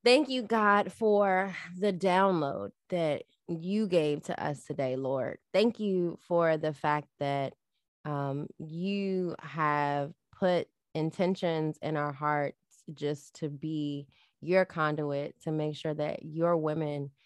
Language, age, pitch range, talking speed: English, 20-39, 150-175 Hz, 130 wpm